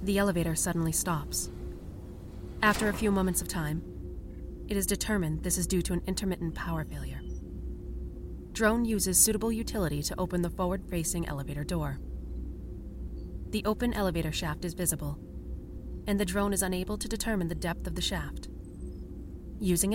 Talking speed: 150 wpm